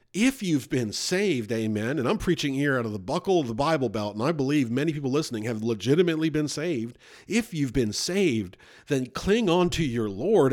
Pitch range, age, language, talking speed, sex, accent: 120-165 Hz, 50-69, English, 210 wpm, male, American